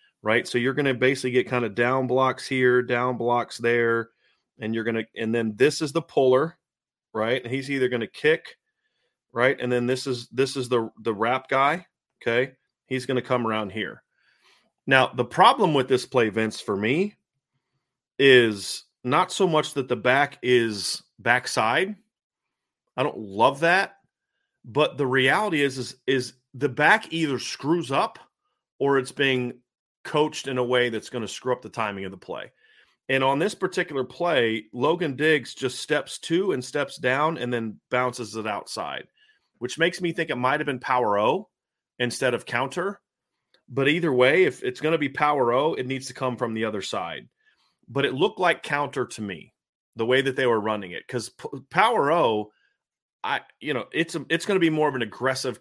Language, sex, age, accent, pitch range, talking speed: English, male, 30-49, American, 125-155 Hz, 195 wpm